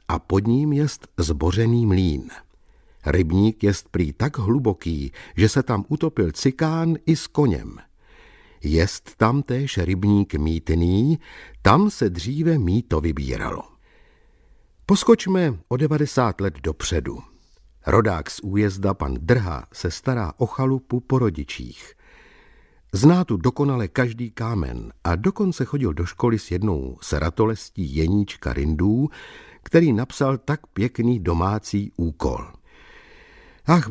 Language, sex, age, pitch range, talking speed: Czech, male, 60-79, 90-130 Hz, 120 wpm